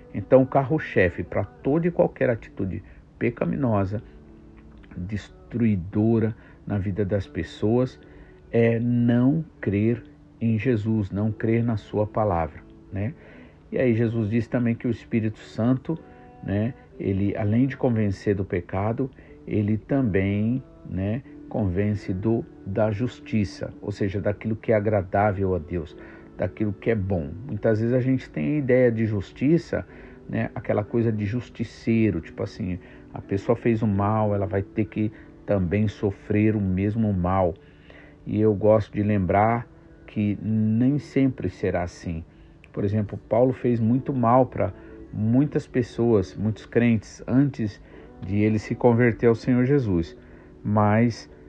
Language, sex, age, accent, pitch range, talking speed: Portuguese, male, 50-69, Brazilian, 100-120 Hz, 140 wpm